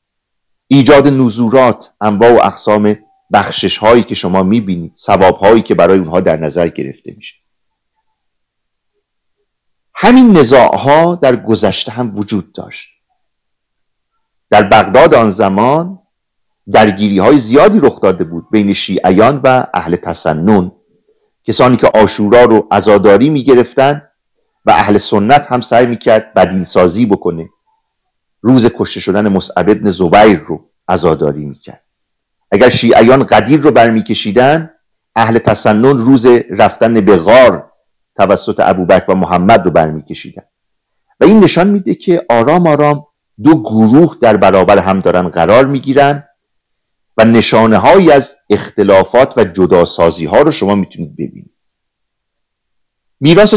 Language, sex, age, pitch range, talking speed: Persian, male, 50-69, 95-140 Hz, 115 wpm